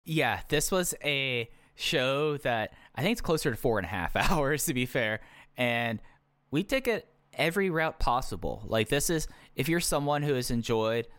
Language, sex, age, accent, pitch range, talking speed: English, male, 10-29, American, 100-135 Hz, 190 wpm